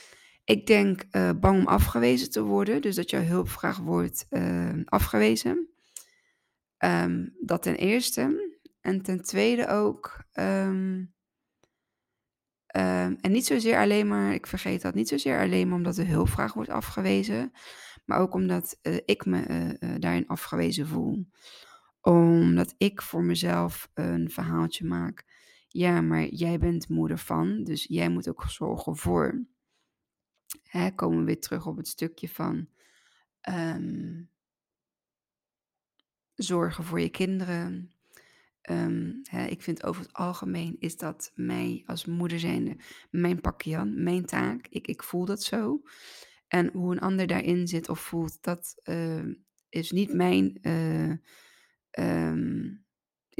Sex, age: female, 20-39